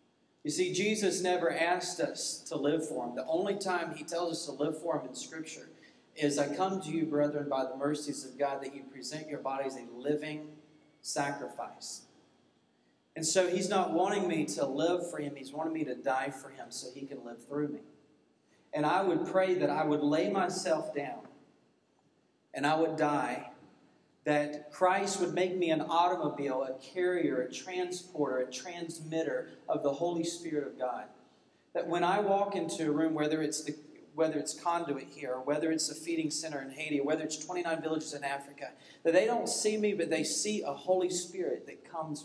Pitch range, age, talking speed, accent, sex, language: 145-175 Hz, 40-59, 195 wpm, American, male, English